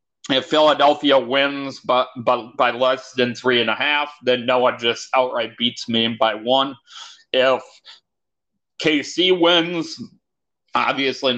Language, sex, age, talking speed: English, male, 40-59, 130 wpm